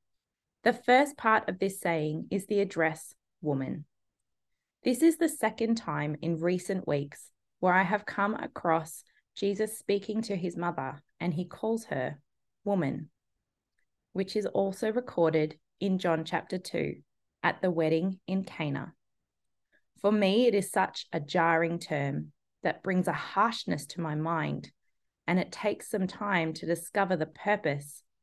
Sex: female